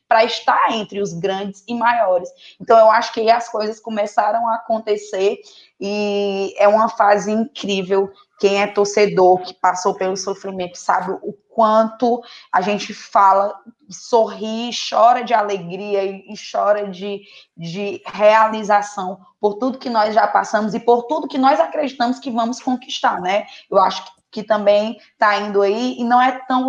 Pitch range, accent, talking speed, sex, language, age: 195-235 Hz, Brazilian, 160 wpm, female, Portuguese, 20-39